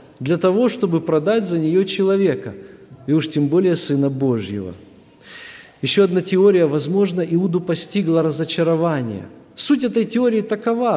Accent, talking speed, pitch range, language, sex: native, 130 wpm, 160-215 Hz, Russian, male